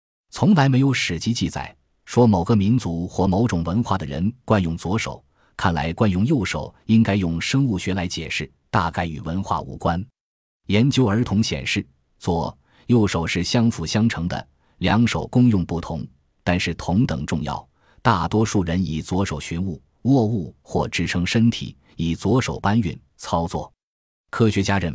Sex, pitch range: male, 85-115 Hz